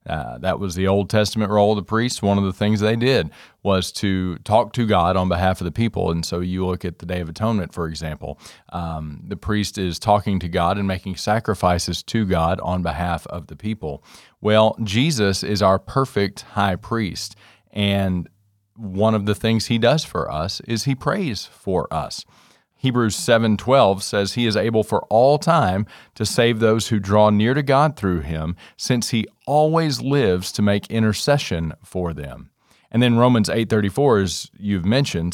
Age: 40-59